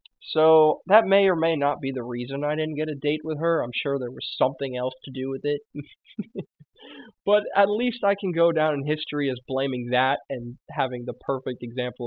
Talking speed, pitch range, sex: 215 wpm, 125-160 Hz, male